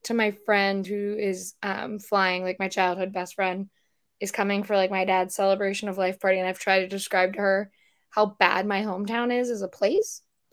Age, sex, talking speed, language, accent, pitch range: 10-29, female, 210 wpm, English, American, 205-260 Hz